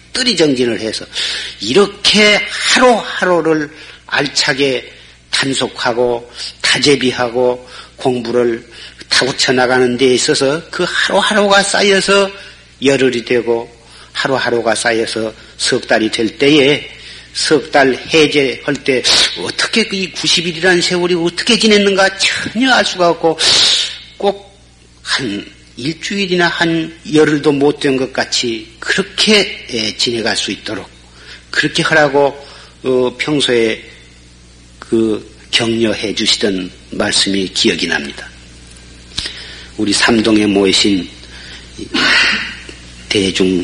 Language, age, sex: Korean, 50-69, male